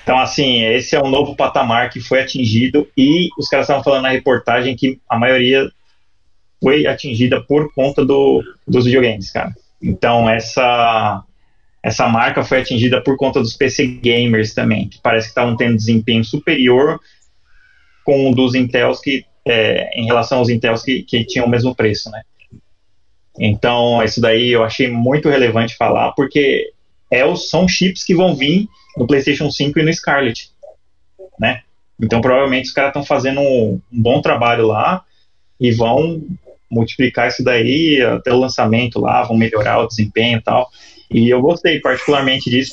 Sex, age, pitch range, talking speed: male, 20-39, 115-135 Hz, 170 wpm